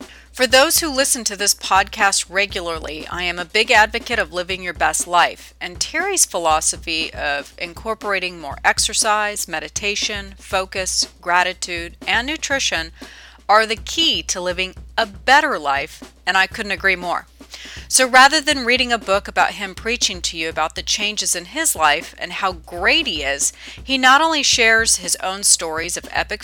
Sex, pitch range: female, 180-240 Hz